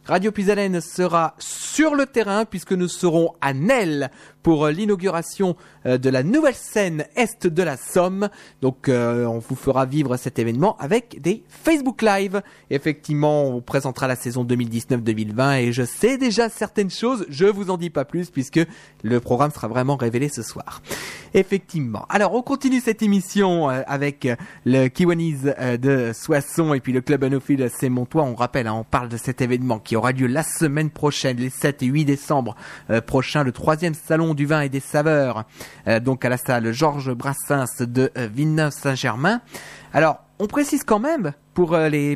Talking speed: 170 wpm